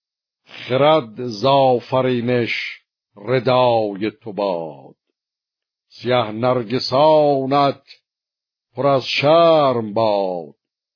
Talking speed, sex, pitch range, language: 55 wpm, male, 120-140 Hz, Persian